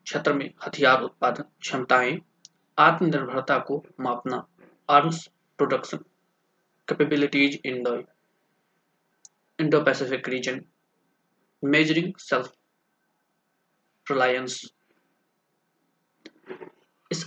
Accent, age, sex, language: native, 20-39, male, Hindi